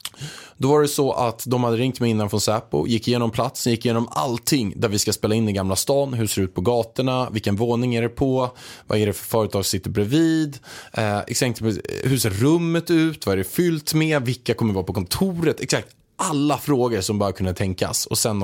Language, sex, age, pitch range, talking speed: Swedish, male, 20-39, 105-140 Hz, 230 wpm